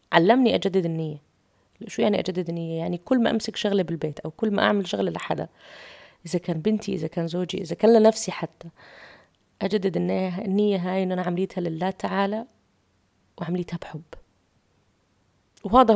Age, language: 20-39, English